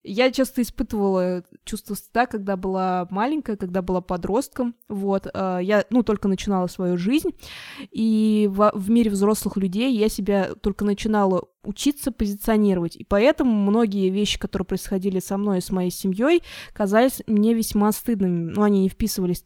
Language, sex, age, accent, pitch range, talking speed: Russian, female, 20-39, native, 190-225 Hz, 155 wpm